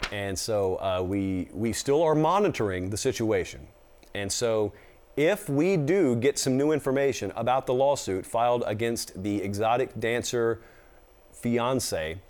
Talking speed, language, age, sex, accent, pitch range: 135 wpm, English, 40-59, male, American, 105-150 Hz